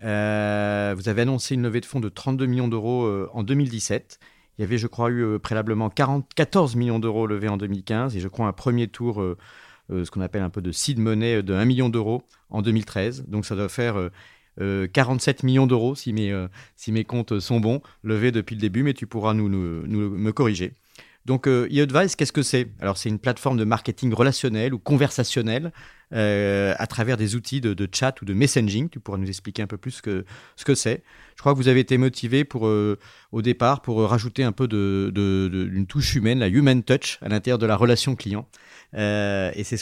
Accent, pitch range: French, 105-130 Hz